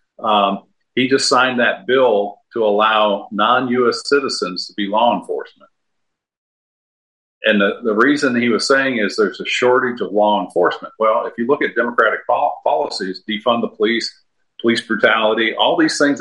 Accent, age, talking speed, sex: American, 50-69, 160 wpm, male